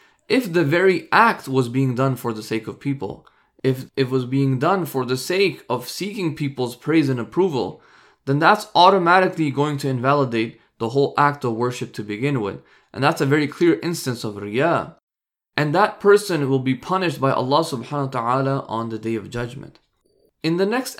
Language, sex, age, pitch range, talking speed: English, male, 20-39, 130-190 Hz, 185 wpm